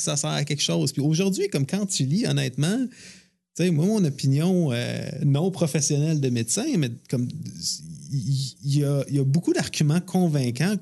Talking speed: 180 wpm